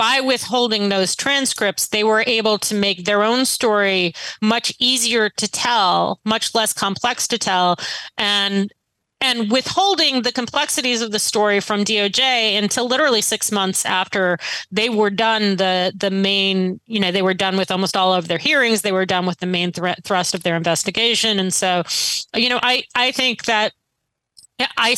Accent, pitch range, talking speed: American, 195-235 Hz, 175 wpm